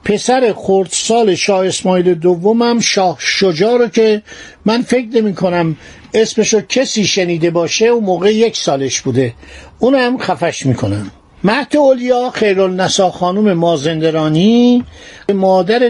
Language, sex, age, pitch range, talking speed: Persian, male, 50-69, 160-220 Hz, 130 wpm